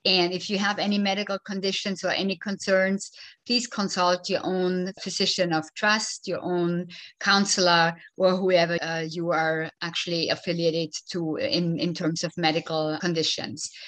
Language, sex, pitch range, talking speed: English, female, 175-210 Hz, 145 wpm